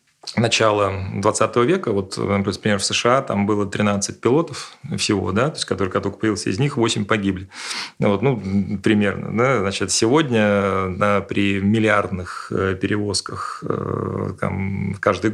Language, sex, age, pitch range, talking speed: Russian, male, 30-49, 100-115 Hz, 135 wpm